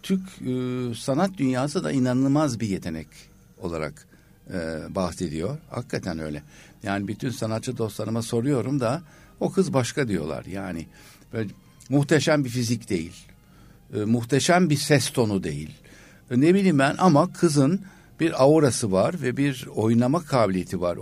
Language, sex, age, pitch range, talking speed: Turkish, male, 60-79, 110-155 Hz, 140 wpm